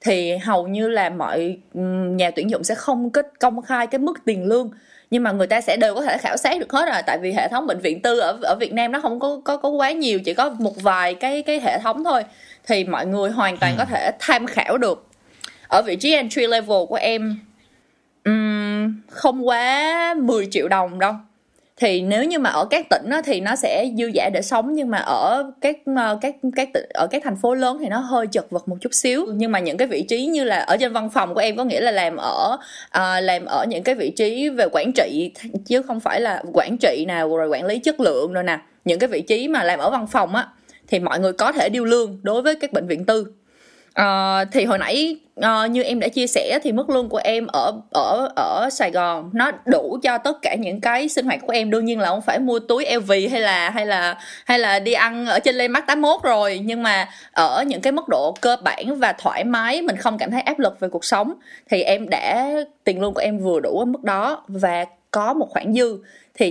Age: 20-39